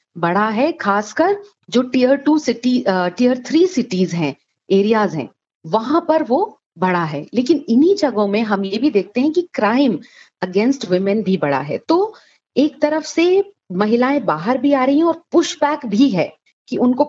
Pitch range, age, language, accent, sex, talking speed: 200-280 Hz, 40-59, Hindi, native, female, 180 wpm